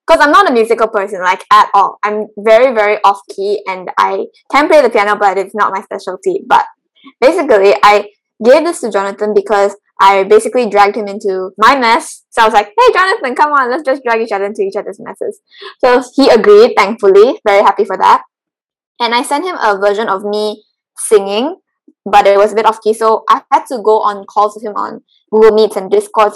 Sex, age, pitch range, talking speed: female, 10-29, 205-325 Hz, 210 wpm